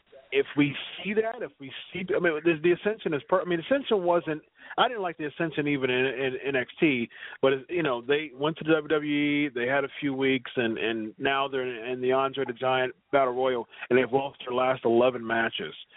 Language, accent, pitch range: English, American, 135-160 Hz